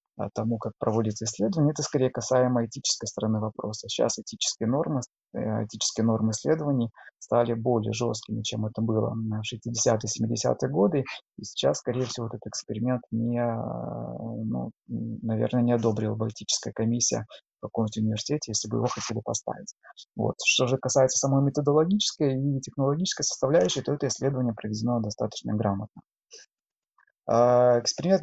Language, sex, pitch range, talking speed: Russian, male, 110-140 Hz, 130 wpm